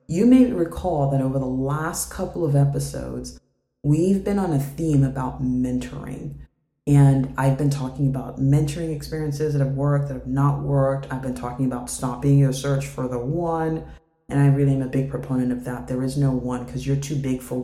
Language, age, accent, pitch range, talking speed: English, 30-49, American, 130-145 Hz, 200 wpm